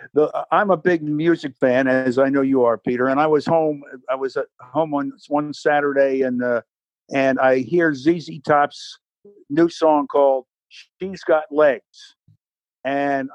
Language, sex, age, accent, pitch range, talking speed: English, male, 50-69, American, 130-165 Hz, 165 wpm